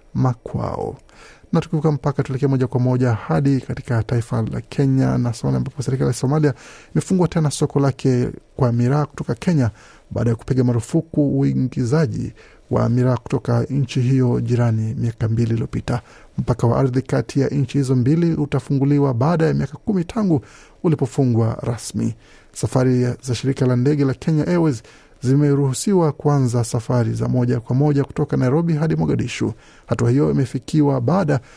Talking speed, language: 145 wpm, Swahili